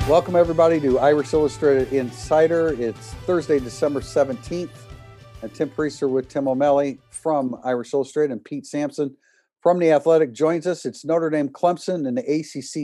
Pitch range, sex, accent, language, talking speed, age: 120-150 Hz, male, American, English, 155 wpm, 50-69